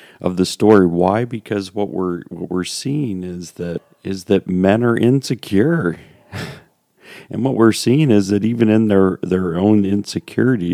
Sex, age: male, 40-59